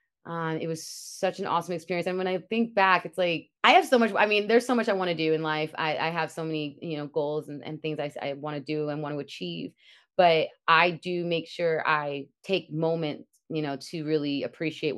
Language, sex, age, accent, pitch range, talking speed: English, female, 30-49, American, 155-190 Hz, 250 wpm